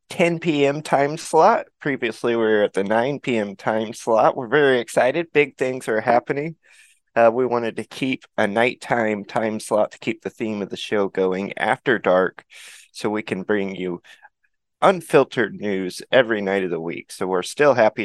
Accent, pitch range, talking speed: American, 100-125 Hz, 185 wpm